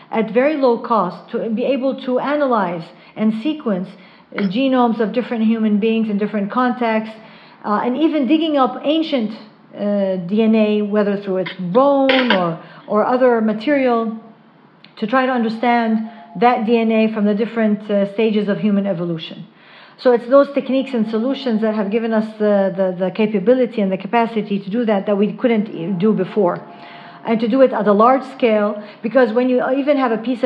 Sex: female